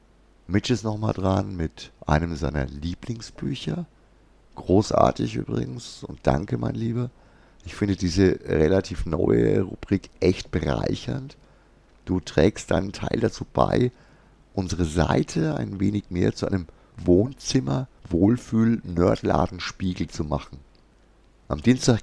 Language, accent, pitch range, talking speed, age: German, German, 80-100 Hz, 115 wpm, 50-69